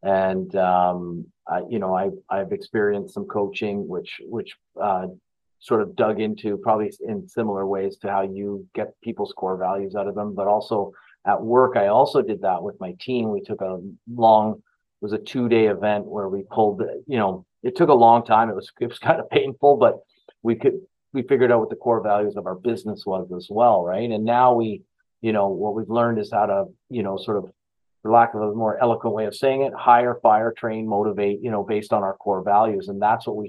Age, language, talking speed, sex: 40-59, English, 220 wpm, male